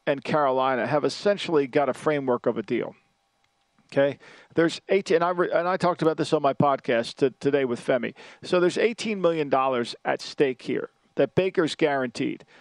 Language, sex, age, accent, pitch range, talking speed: English, male, 50-69, American, 150-200 Hz, 175 wpm